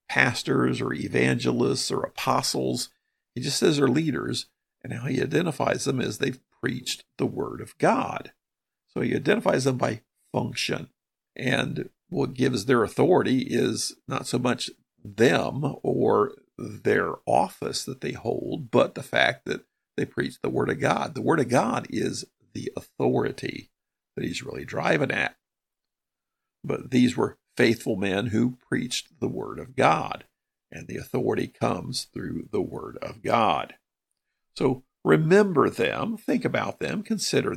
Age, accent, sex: 50-69, American, male